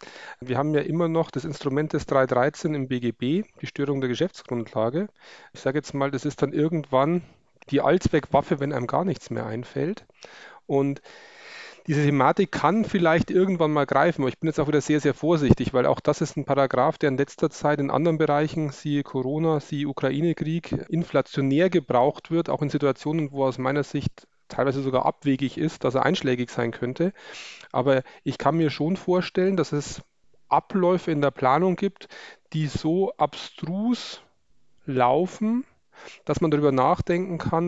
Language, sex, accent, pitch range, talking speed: German, male, German, 135-165 Hz, 170 wpm